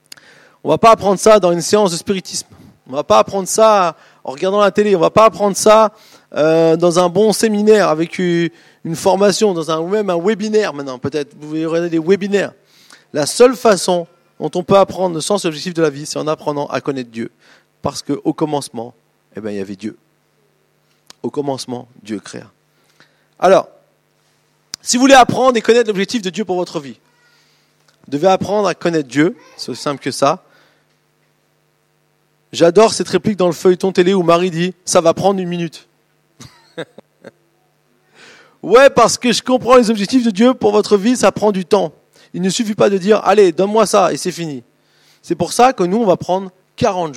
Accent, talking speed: French, 195 wpm